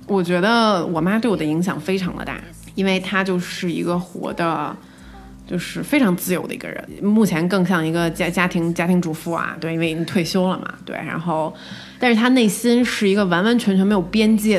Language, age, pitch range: Chinese, 20-39, 170-210 Hz